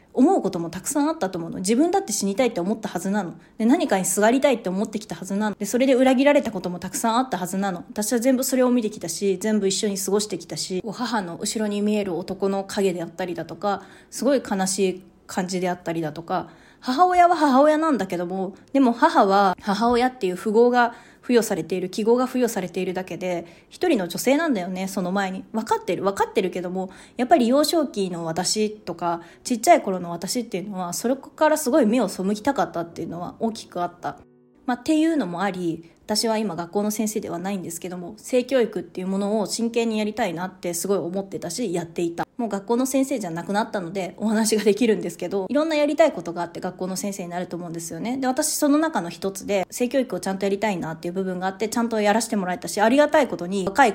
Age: 20-39